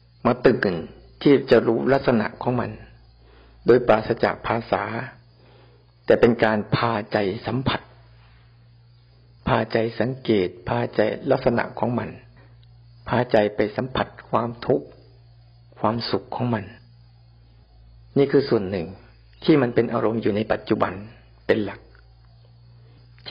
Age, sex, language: 60-79, male, Thai